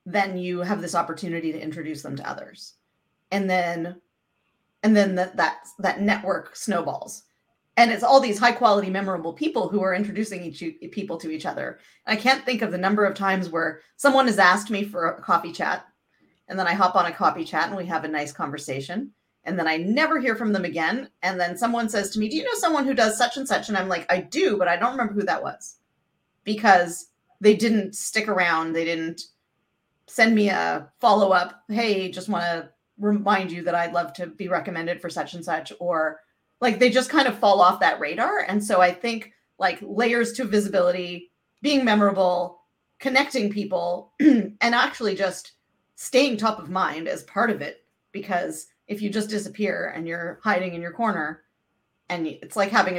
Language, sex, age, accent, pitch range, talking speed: English, female, 30-49, American, 175-220 Hz, 200 wpm